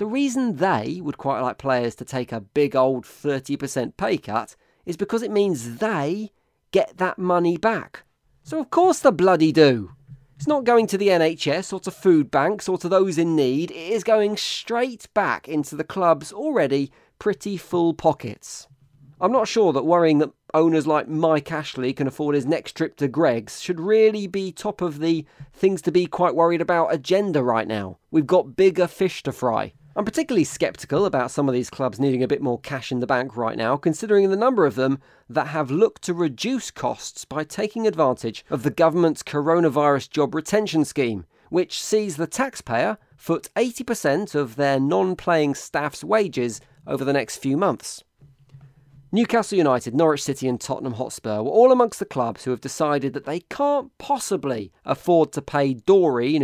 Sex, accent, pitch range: male, British, 135-190 Hz